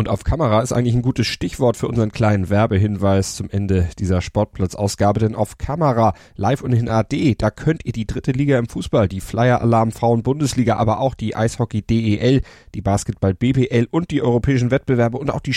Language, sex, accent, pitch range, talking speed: German, male, German, 100-125 Hz, 175 wpm